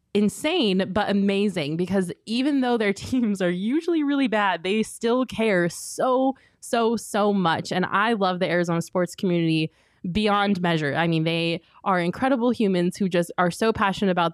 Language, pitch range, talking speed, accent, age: English, 160-190 Hz, 165 wpm, American, 20-39